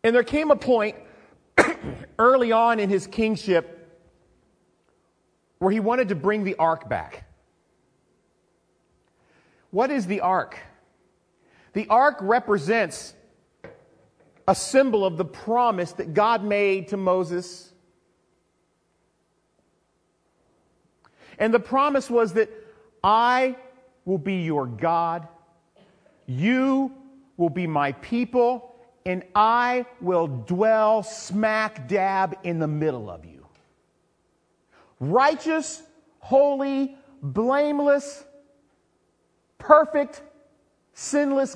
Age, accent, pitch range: 40-59, American, 175-250 Hz